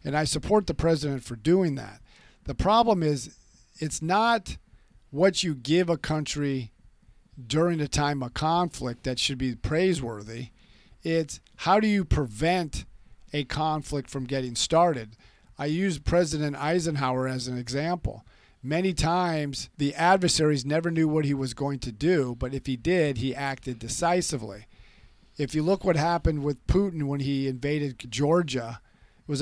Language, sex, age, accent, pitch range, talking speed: English, male, 50-69, American, 130-160 Hz, 155 wpm